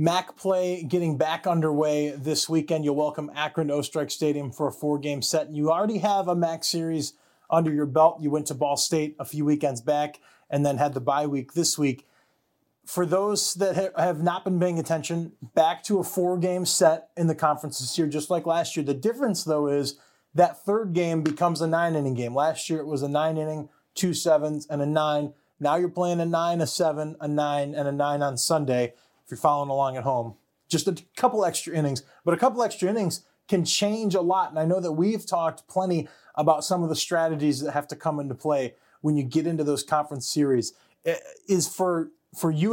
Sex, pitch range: male, 150-175 Hz